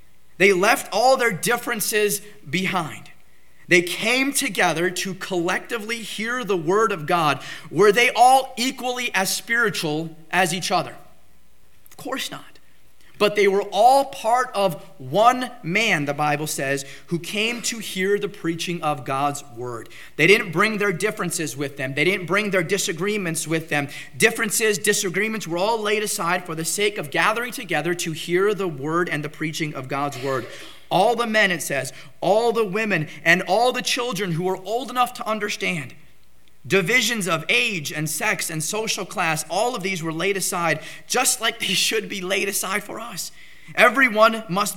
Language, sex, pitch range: English, male, 160-215 Hz